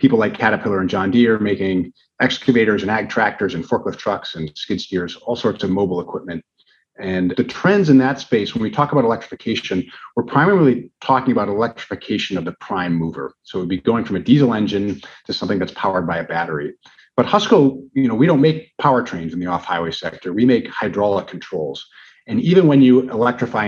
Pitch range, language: 90-135 Hz, English